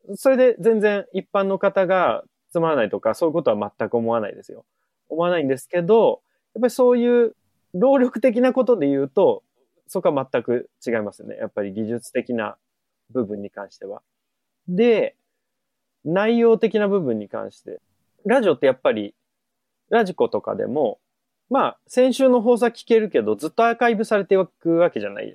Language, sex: Japanese, male